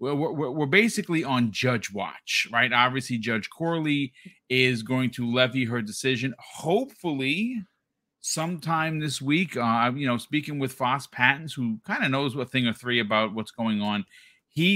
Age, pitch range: 30-49, 115-140 Hz